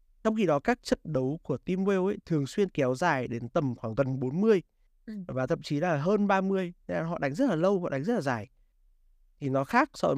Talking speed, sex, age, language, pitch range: 250 wpm, male, 20-39, Vietnamese, 130-170 Hz